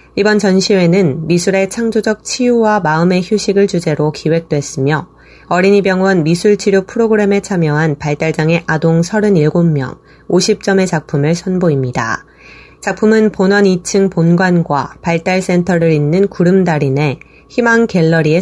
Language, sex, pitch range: Korean, female, 160-195 Hz